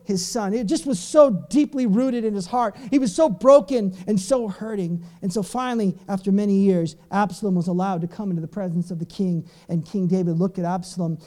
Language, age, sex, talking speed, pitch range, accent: English, 40-59, male, 220 wpm, 190-275 Hz, American